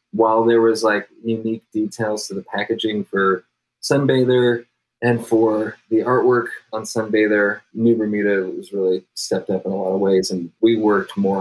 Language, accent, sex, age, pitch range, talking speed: English, American, male, 20-39, 100-120 Hz, 170 wpm